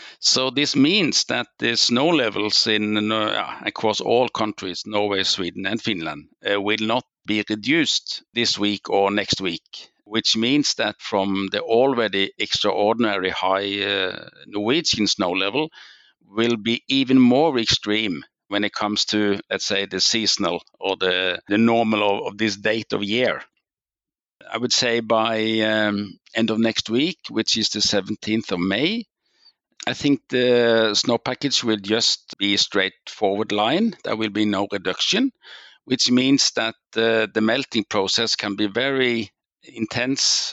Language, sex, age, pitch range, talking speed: English, male, 60-79, 105-120 Hz, 150 wpm